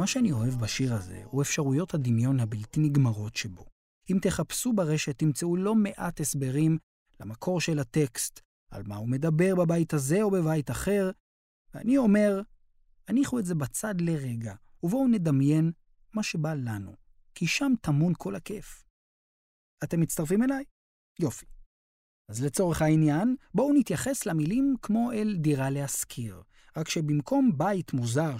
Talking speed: 135 wpm